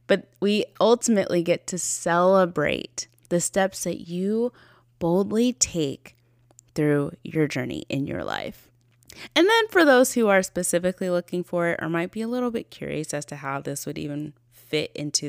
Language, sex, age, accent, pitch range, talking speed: English, female, 20-39, American, 125-195 Hz, 170 wpm